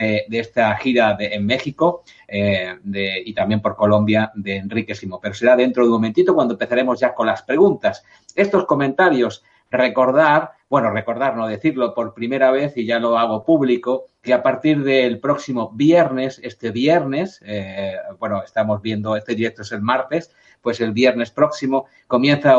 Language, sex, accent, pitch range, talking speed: Spanish, male, Spanish, 110-135 Hz, 170 wpm